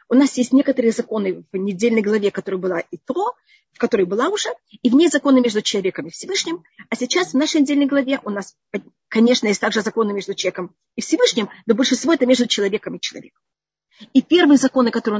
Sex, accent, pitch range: female, native, 210-290 Hz